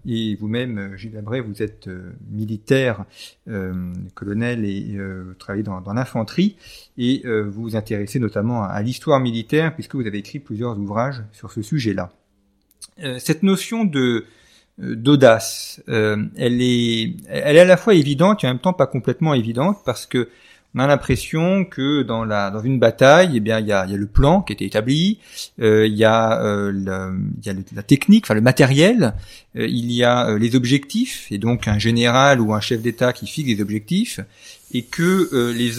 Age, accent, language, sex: 40-59, French, French, male